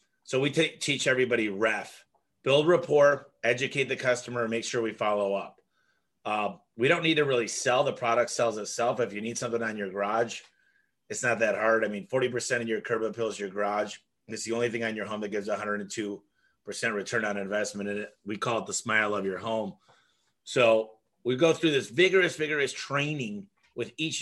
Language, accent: English, American